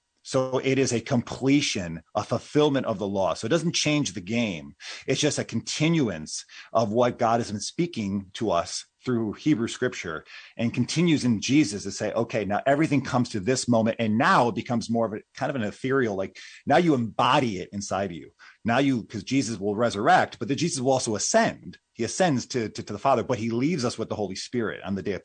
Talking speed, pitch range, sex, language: 225 wpm, 100-130 Hz, male, English